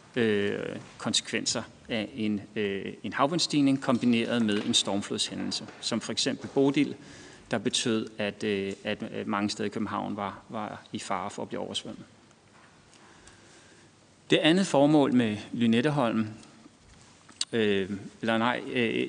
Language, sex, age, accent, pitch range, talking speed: Danish, male, 30-49, native, 110-130 Hz, 130 wpm